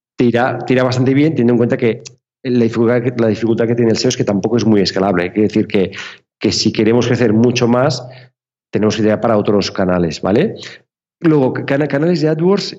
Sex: male